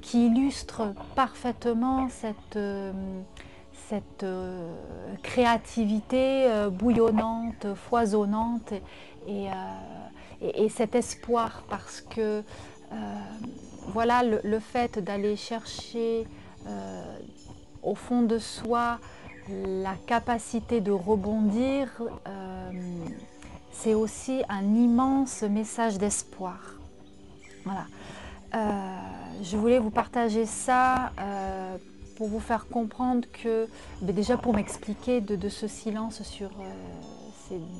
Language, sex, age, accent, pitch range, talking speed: French, female, 30-49, French, 195-235 Hz, 90 wpm